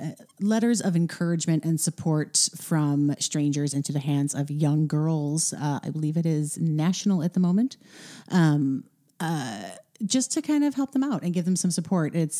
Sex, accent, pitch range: female, American, 145-180 Hz